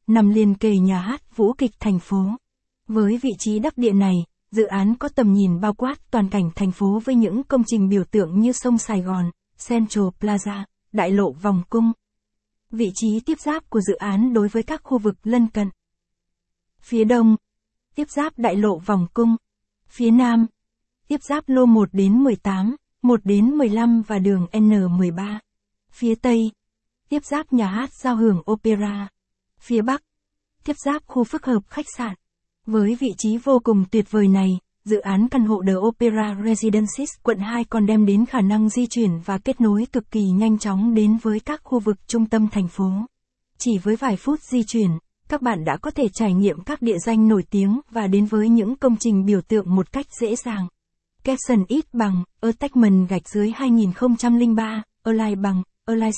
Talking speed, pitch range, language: 190 wpm, 205-240 Hz, Vietnamese